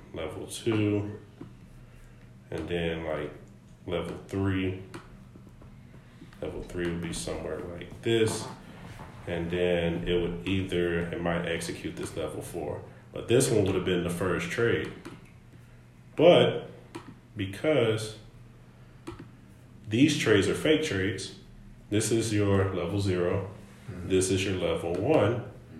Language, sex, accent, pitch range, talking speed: English, male, American, 85-105 Hz, 120 wpm